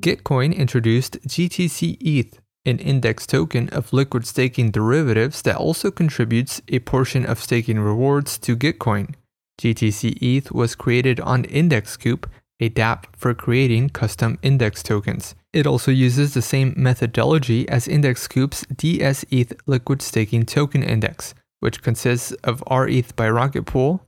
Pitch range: 115-140 Hz